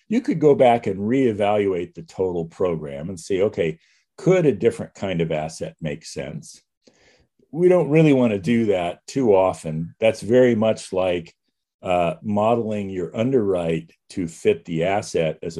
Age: 50-69